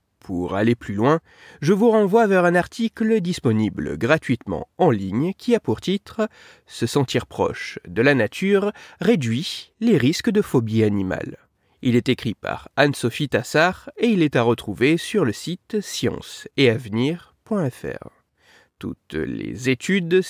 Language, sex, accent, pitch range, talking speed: French, male, French, 115-195 Hz, 150 wpm